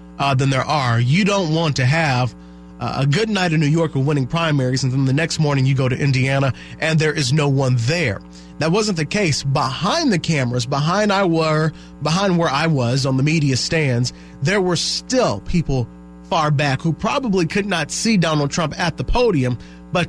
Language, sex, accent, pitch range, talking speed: English, male, American, 125-165 Hz, 205 wpm